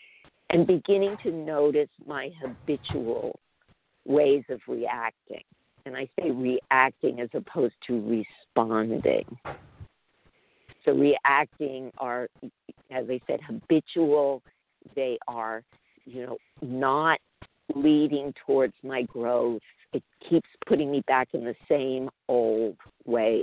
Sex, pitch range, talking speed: female, 130-155 Hz, 110 wpm